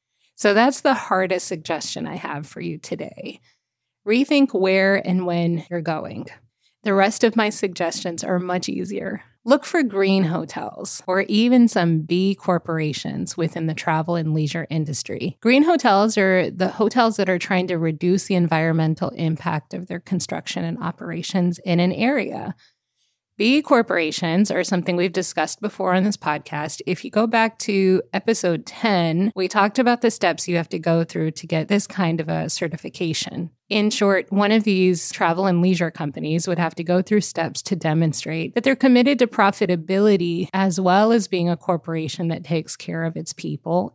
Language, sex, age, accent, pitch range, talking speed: English, female, 30-49, American, 165-205 Hz, 175 wpm